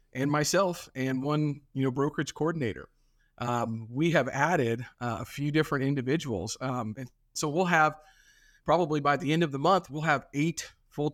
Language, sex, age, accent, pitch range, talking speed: English, male, 40-59, American, 125-150 Hz, 180 wpm